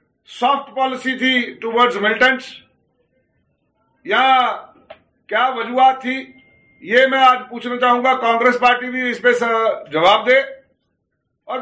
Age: 50-69